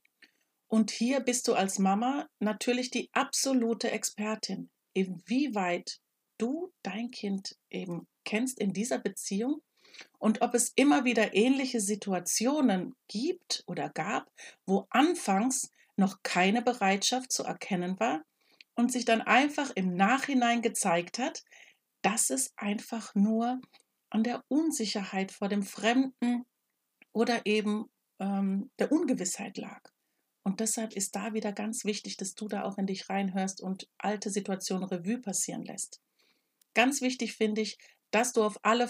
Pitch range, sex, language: 195-245 Hz, female, German